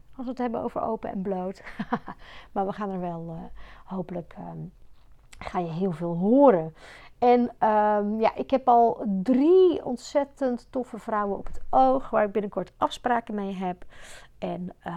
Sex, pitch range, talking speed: female, 200-260 Hz, 165 wpm